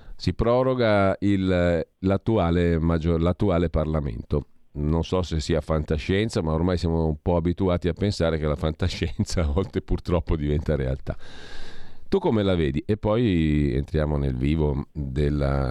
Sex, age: male, 40-59